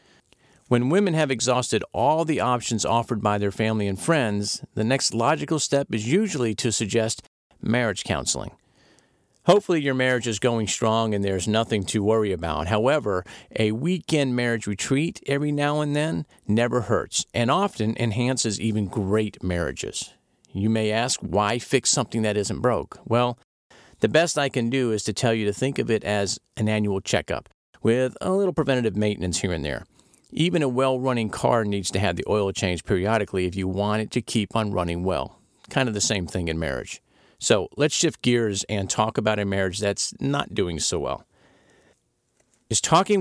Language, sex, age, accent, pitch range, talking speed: English, male, 50-69, American, 105-135 Hz, 180 wpm